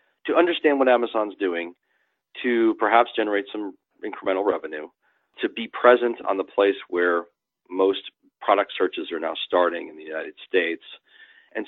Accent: American